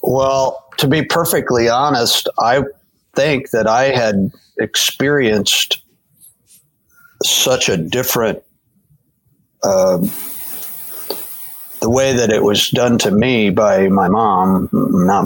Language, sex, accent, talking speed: English, male, American, 100 wpm